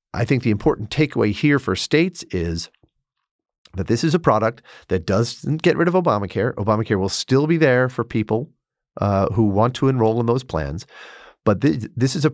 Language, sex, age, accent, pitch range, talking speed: English, male, 40-59, American, 95-125 Hz, 195 wpm